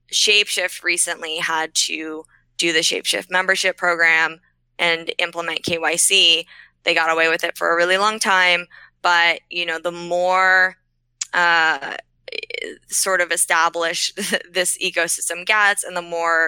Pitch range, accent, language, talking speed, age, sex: 165-185 Hz, American, English, 135 wpm, 20-39, female